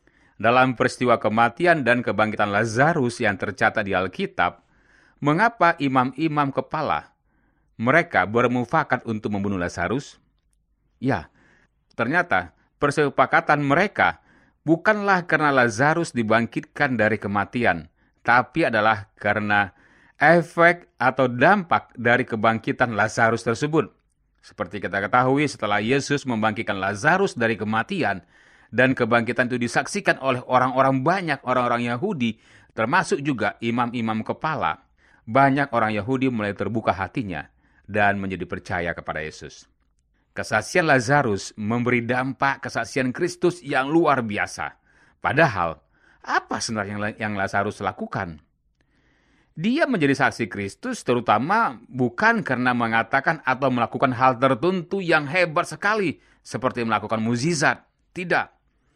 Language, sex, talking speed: Indonesian, male, 105 wpm